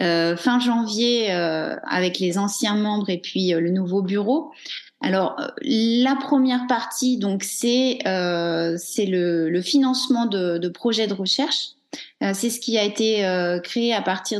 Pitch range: 185-245 Hz